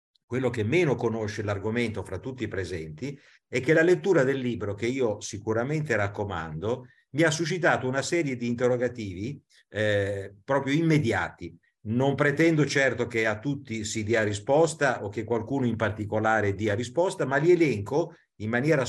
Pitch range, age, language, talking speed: 105-145 Hz, 50-69, Italian, 160 wpm